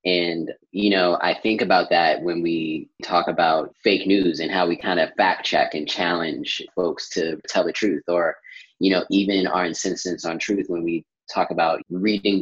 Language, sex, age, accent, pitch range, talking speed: English, male, 20-39, American, 85-105 Hz, 195 wpm